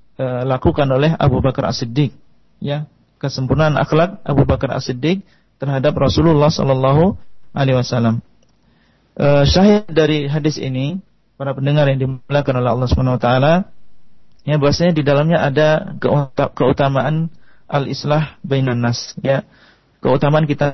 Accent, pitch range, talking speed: native, 130-160 Hz, 120 wpm